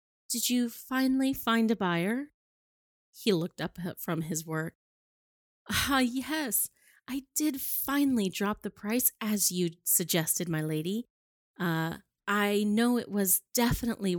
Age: 30-49